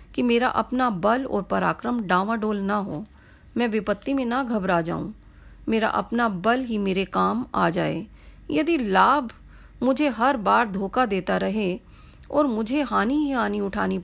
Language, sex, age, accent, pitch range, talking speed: Hindi, female, 40-59, native, 205-265 Hz, 160 wpm